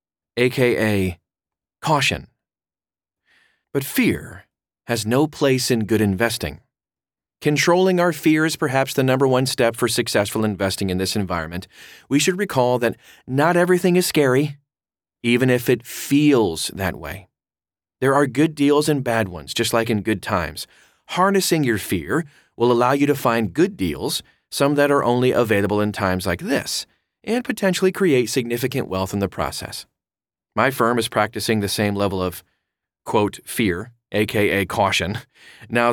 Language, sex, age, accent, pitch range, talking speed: English, male, 30-49, American, 100-140 Hz, 150 wpm